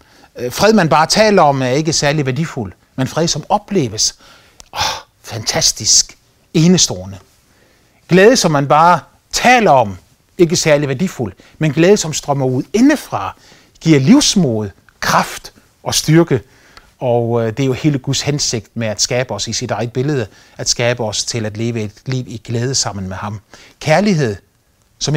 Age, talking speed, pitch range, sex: 30-49, 155 wpm, 115-165 Hz, male